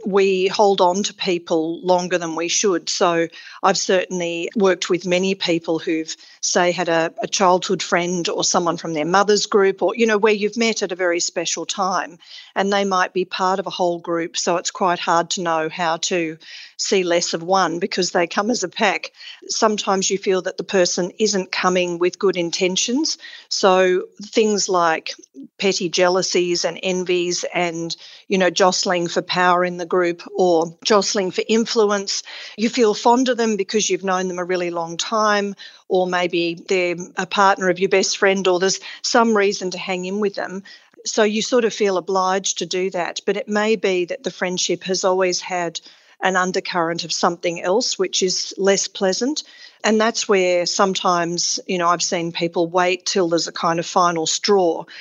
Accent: Australian